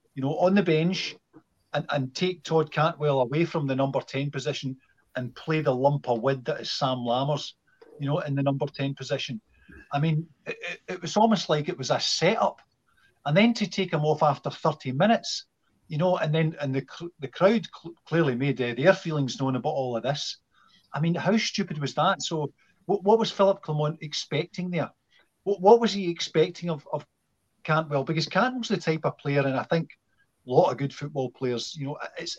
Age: 40-59